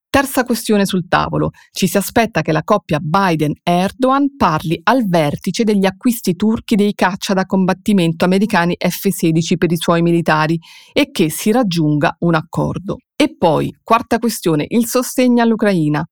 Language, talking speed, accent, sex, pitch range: Italian, 150 wpm, native, female, 170-225 Hz